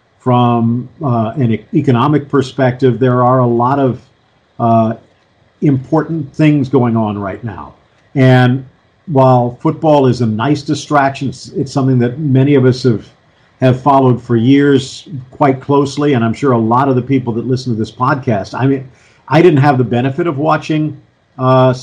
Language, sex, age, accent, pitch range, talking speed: English, male, 50-69, American, 120-140 Hz, 165 wpm